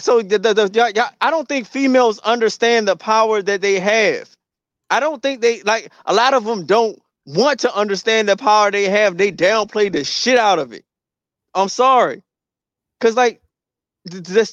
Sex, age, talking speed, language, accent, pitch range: male, 20-39, 185 wpm, English, American, 155-210 Hz